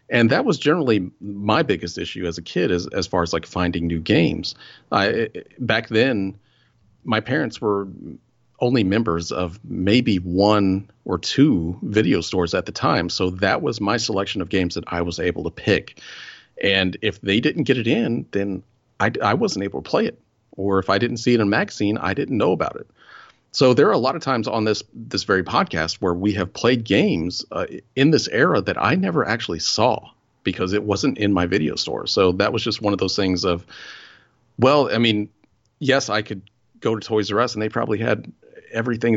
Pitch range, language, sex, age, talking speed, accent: 95-115 Hz, English, male, 40-59, 205 wpm, American